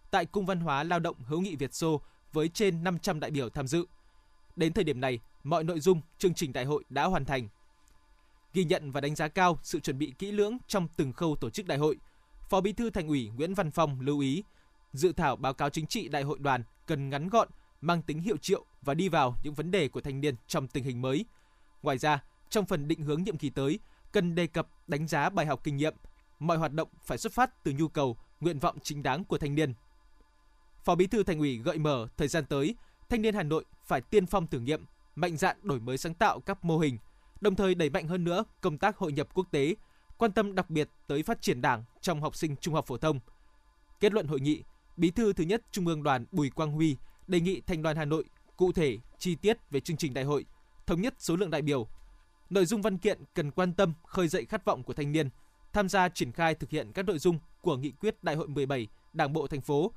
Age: 20-39